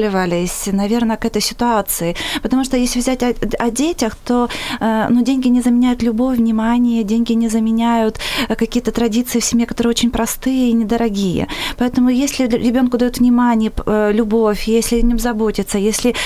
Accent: native